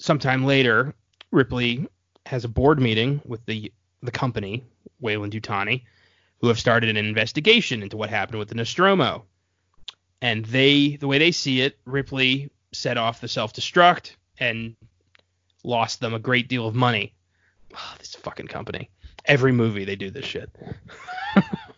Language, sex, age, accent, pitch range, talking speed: English, male, 20-39, American, 110-150 Hz, 155 wpm